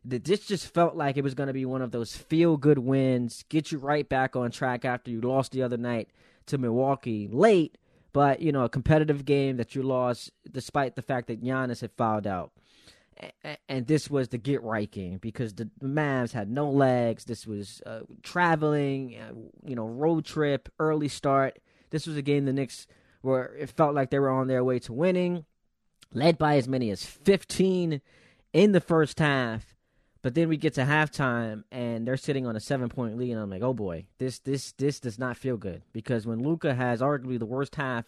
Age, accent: 20-39, American